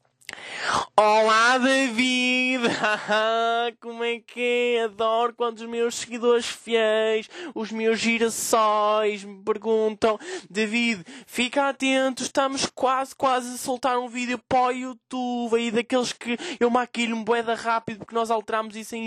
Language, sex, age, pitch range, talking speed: Portuguese, male, 20-39, 200-245 Hz, 135 wpm